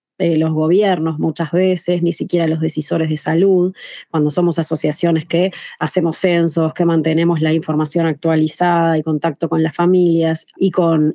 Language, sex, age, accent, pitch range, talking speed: Spanish, female, 20-39, Argentinian, 160-190 Hz, 155 wpm